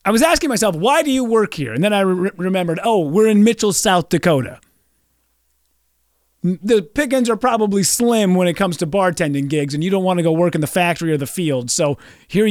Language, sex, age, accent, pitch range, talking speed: English, male, 30-49, American, 160-255 Hz, 215 wpm